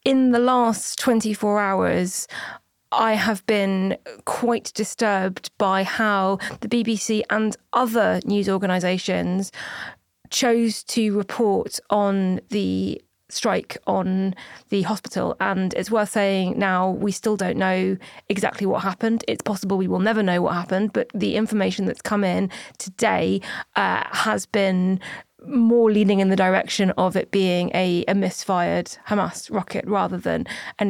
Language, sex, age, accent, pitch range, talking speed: English, female, 20-39, British, 190-220 Hz, 140 wpm